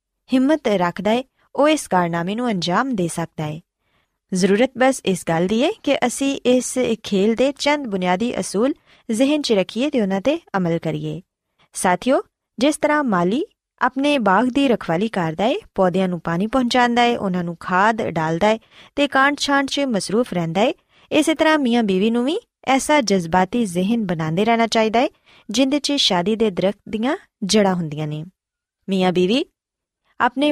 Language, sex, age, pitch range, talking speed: Punjabi, female, 20-39, 185-265 Hz, 145 wpm